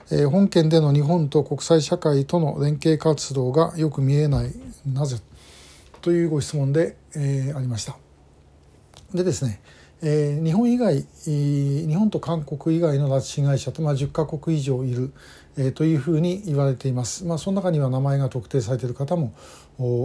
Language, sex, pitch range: Japanese, male, 130-160 Hz